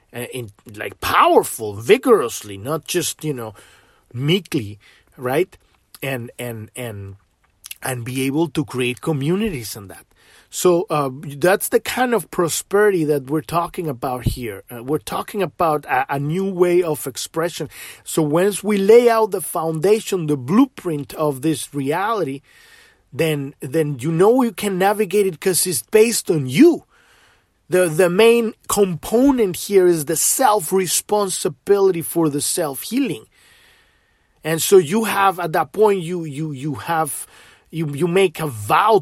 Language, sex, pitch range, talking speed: English, male, 145-200 Hz, 150 wpm